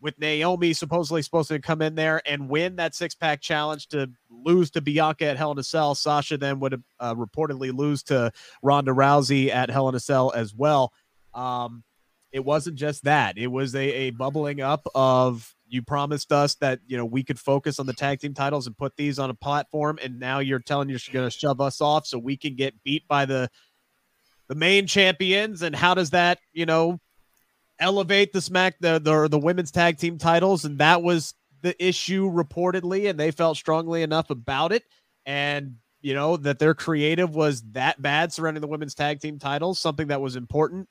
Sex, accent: male, American